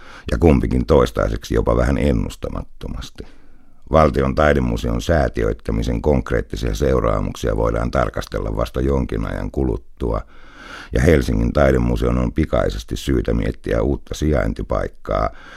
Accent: native